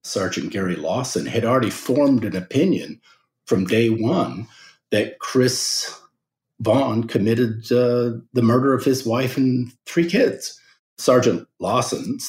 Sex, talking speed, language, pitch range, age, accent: male, 125 wpm, English, 105-125 Hz, 50-69, American